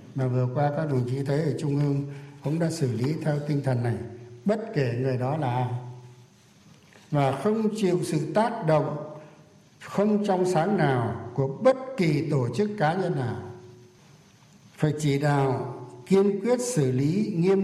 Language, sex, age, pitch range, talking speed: Vietnamese, male, 60-79, 135-180 Hz, 165 wpm